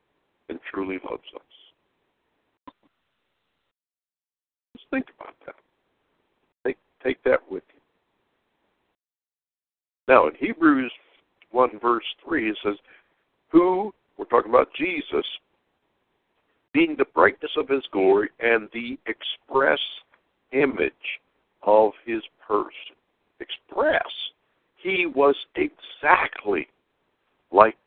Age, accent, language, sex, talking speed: 60-79, American, English, male, 95 wpm